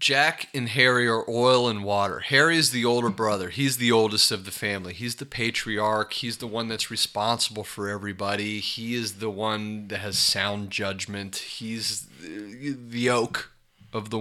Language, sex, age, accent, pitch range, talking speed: English, male, 30-49, American, 100-115 Hz, 175 wpm